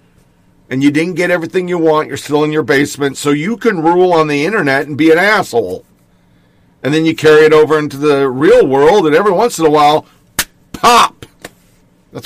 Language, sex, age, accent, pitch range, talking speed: English, male, 50-69, American, 150-215 Hz, 200 wpm